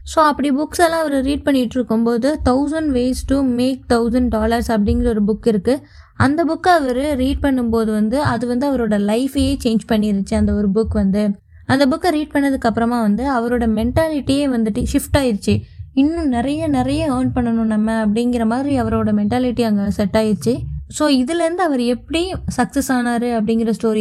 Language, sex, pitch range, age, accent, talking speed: Tamil, female, 220-275 Hz, 20-39, native, 160 wpm